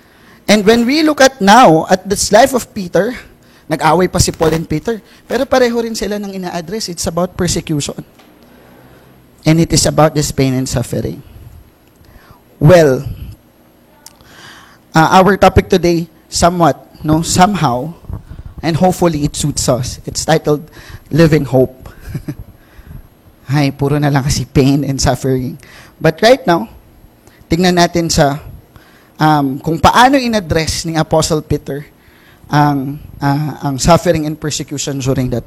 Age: 20-39